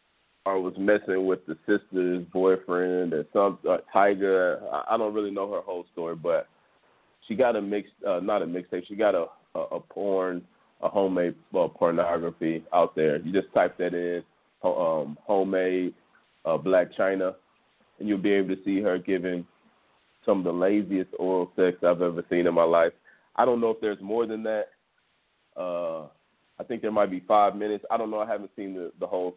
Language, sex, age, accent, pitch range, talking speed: English, male, 30-49, American, 90-110 Hz, 195 wpm